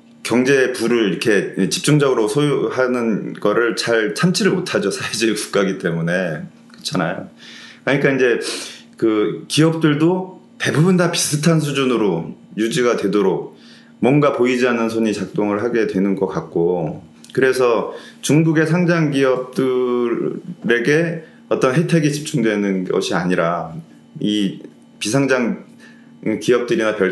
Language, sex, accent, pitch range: Korean, male, native, 100-145 Hz